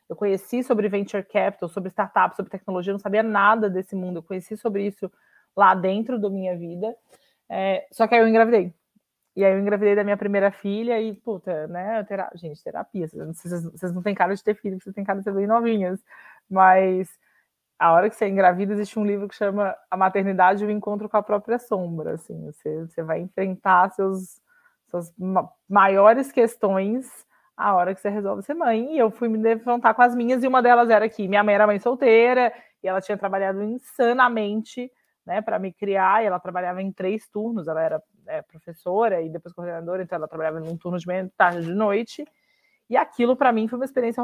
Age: 20-39